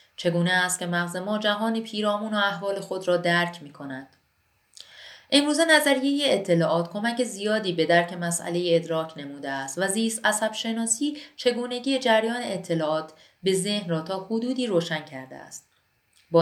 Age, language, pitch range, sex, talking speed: 30-49, Persian, 155-210 Hz, female, 145 wpm